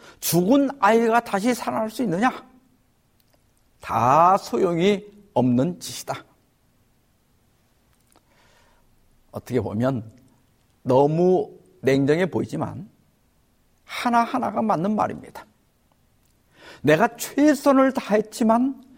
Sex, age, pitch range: male, 50-69, 140-230 Hz